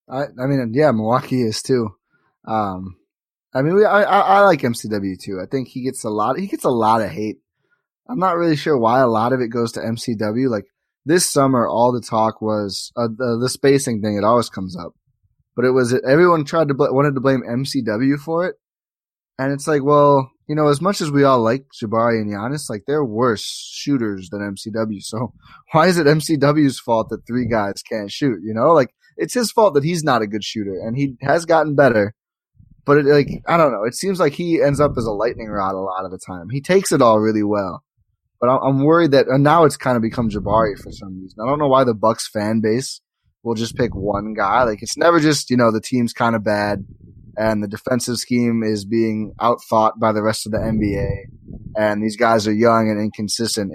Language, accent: English, American